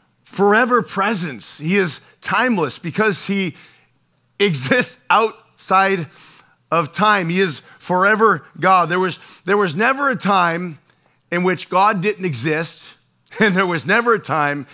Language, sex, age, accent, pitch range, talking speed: English, male, 40-59, American, 155-200 Hz, 130 wpm